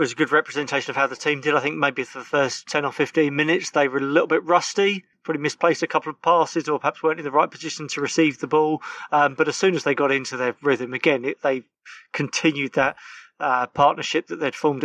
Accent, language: British, English